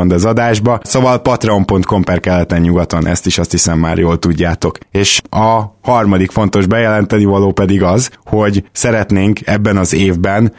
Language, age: Hungarian, 20-39